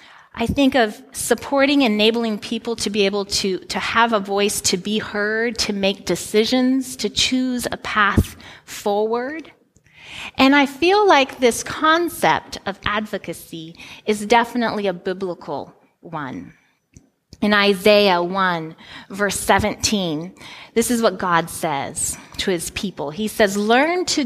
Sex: female